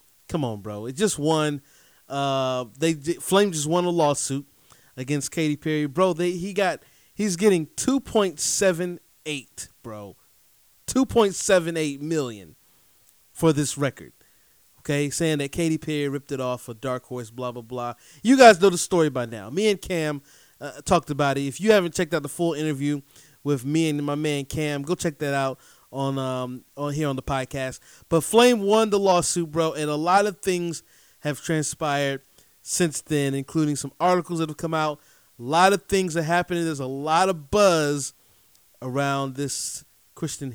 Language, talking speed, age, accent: English, 175 wpm, 30-49, American